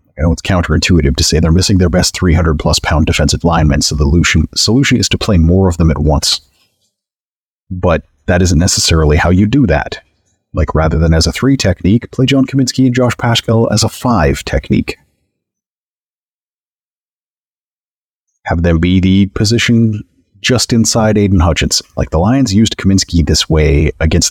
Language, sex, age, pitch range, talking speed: English, male, 30-49, 85-105 Hz, 170 wpm